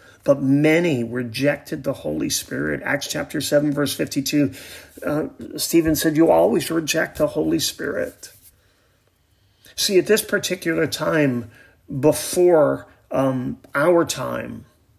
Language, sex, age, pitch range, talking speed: English, male, 40-59, 125-150 Hz, 115 wpm